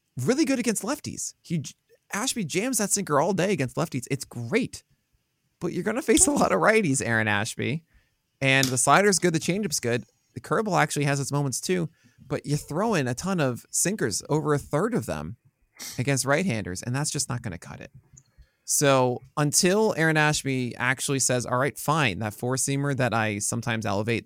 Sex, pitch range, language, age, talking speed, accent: male, 115-150 Hz, English, 20-39, 195 wpm, American